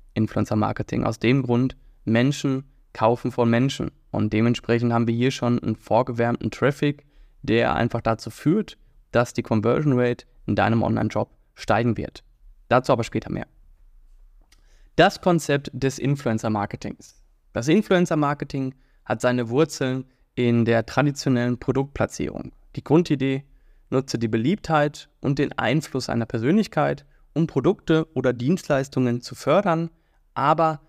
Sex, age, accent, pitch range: male, 20-39, German, 120-145 Hz